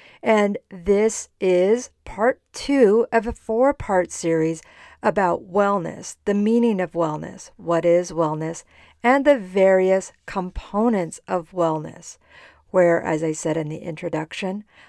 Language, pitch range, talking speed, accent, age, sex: English, 170-215 Hz, 125 wpm, American, 50-69, female